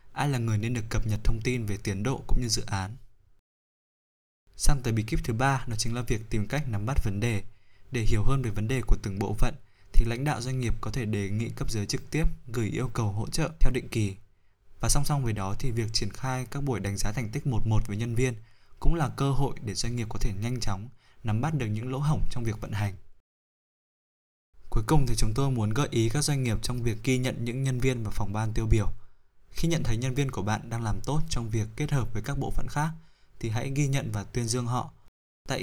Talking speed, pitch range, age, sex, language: 260 wpm, 105-130 Hz, 20-39, male, Vietnamese